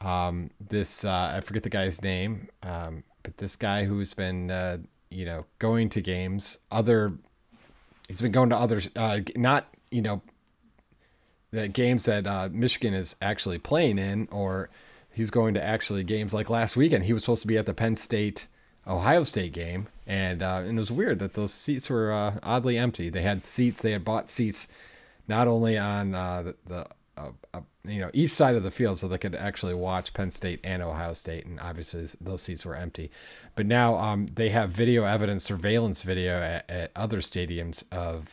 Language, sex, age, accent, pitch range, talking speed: English, male, 30-49, American, 90-110 Hz, 195 wpm